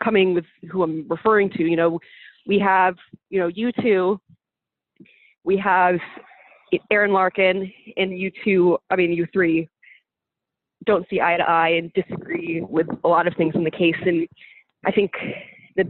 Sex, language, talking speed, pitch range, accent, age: female, English, 165 wpm, 175-225 Hz, American, 20-39